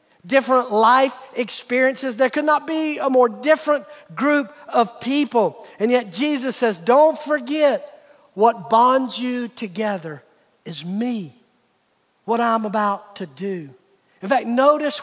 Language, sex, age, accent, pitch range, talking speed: English, male, 50-69, American, 215-270 Hz, 130 wpm